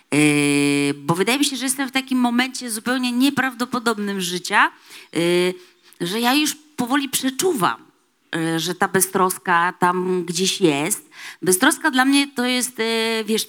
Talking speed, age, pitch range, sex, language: 145 wpm, 30-49, 175-235 Hz, female, Polish